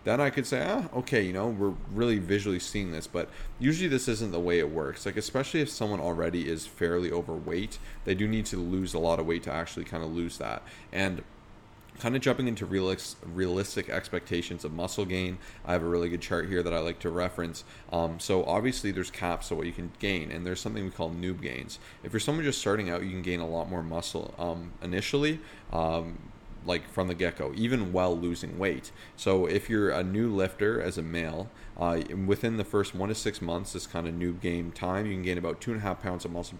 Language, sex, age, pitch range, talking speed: English, male, 30-49, 85-105 Hz, 230 wpm